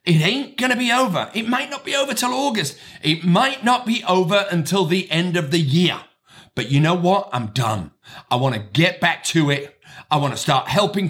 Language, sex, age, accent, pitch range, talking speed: English, male, 40-59, British, 145-205 Hz, 225 wpm